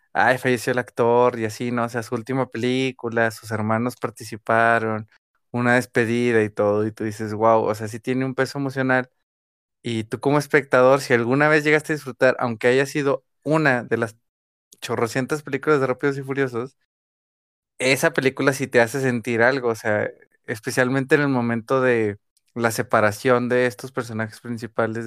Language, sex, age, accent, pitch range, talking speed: Spanish, male, 20-39, Mexican, 110-130 Hz, 170 wpm